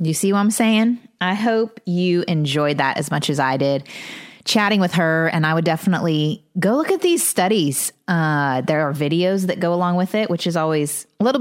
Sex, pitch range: female, 150-190 Hz